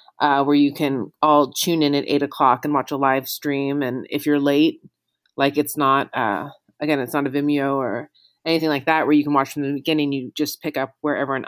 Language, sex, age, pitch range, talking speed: English, female, 30-49, 145-160 Hz, 235 wpm